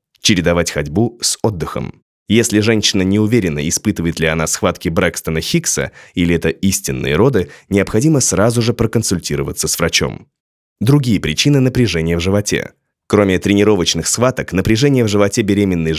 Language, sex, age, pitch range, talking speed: Russian, male, 20-39, 90-120 Hz, 135 wpm